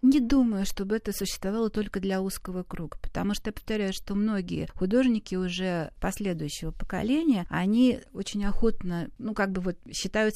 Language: Russian